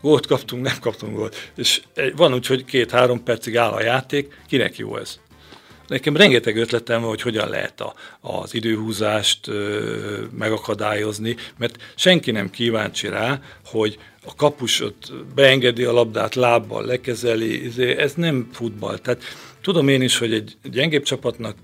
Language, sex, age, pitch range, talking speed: Hungarian, male, 50-69, 110-130 Hz, 145 wpm